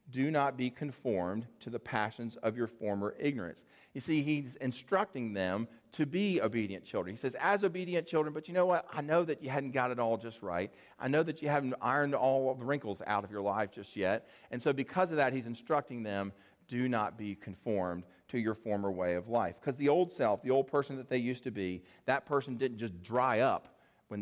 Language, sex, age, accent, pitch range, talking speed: English, male, 40-59, American, 115-145 Hz, 230 wpm